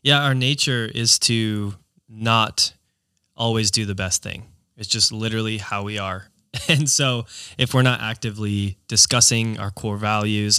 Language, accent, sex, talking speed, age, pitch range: English, American, male, 155 wpm, 20-39, 100-120 Hz